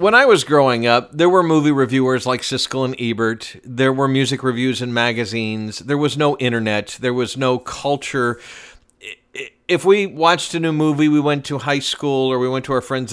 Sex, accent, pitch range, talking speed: male, American, 110-140 Hz, 200 wpm